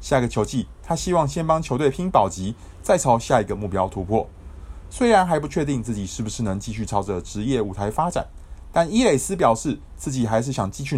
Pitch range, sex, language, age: 95-130 Hz, male, Chinese, 20-39